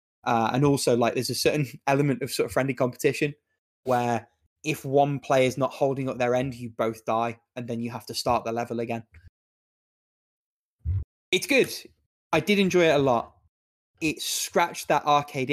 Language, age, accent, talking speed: English, 20-39, British, 180 wpm